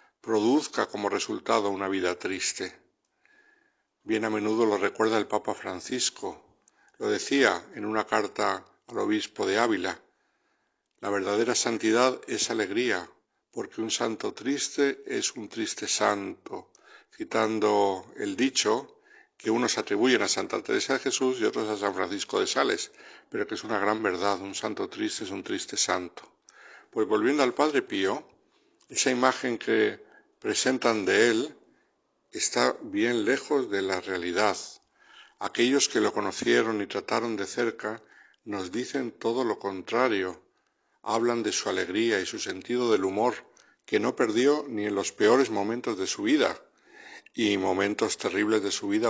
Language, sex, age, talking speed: Spanish, male, 60-79, 150 wpm